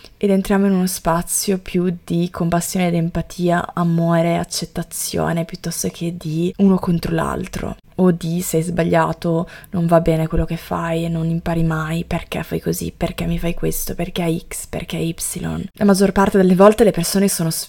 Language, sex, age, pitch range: Italian, female, 20-39, 165-190 Hz